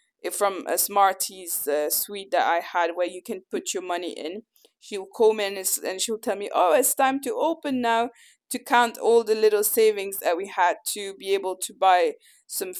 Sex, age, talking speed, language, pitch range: female, 20-39, 205 wpm, English, 190-260 Hz